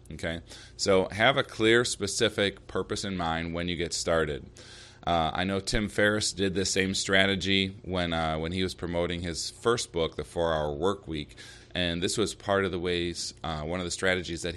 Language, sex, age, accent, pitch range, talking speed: English, male, 30-49, American, 85-105 Hz, 200 wpm